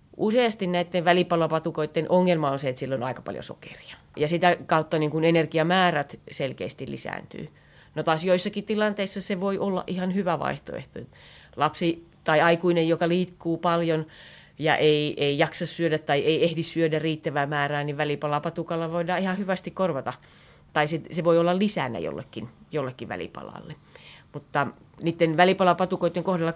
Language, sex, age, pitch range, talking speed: Finnish, female, 30-49, 150-180 Hz, 145 wpm